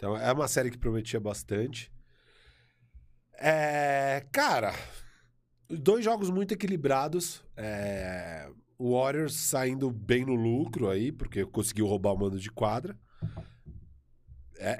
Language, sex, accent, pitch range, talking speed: Portuguese, male, Brazilian, 105-135 Hz, 120 wpm